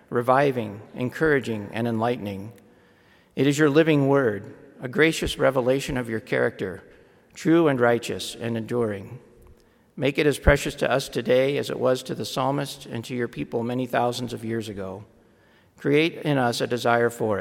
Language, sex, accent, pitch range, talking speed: English, male, American, 115-140 Hz, 165 wpm